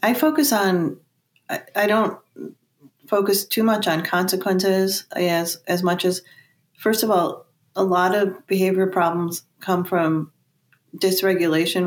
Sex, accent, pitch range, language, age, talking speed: female, American, 160-180 Hz, English, 30-49, 130 wpm